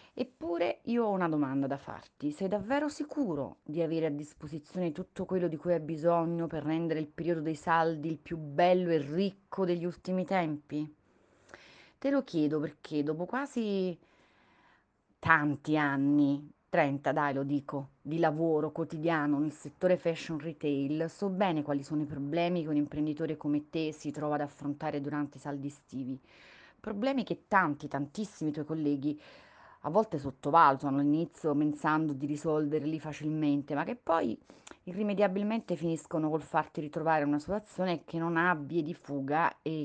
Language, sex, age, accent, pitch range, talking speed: Italian, female, 30-49, native, 145-175 Hz, 155 wpm